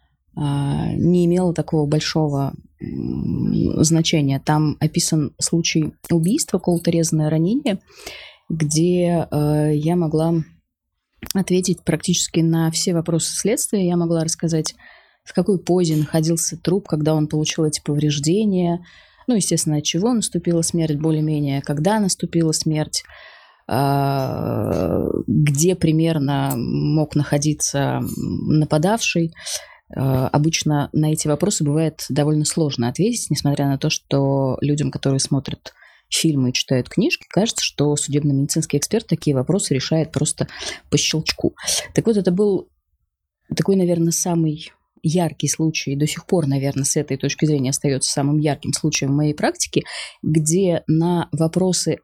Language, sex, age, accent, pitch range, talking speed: Russian, female, 20-39, native, 145-175 Hz, 120 wpm